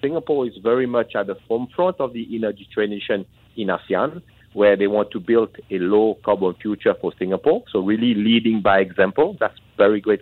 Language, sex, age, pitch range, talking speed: English, male, 50-69, 105-120 Hz, 180 wpm